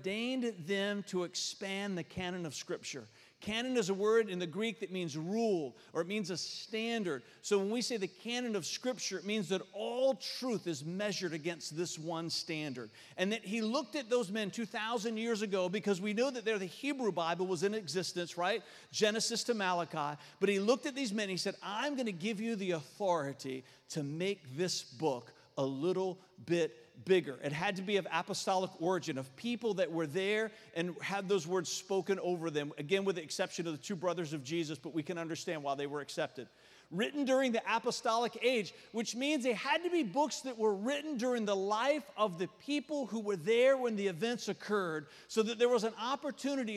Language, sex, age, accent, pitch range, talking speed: English, male, 40-59, American, 175-230 Hz, 205 wpm